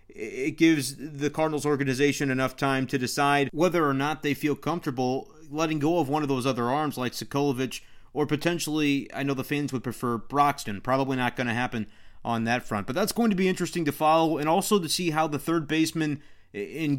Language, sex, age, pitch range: English, male, 30-49, 130-155 Hz